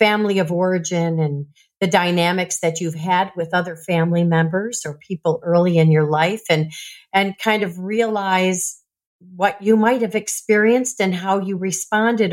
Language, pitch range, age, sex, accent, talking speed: English, 180-235 Hz, 50-69, female, American, 160 wpm